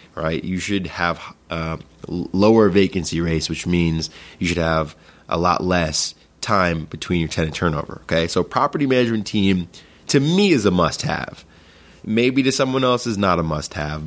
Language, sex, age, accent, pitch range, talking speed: English, male, 20-39, American, 80-100 Hz, 165 wpm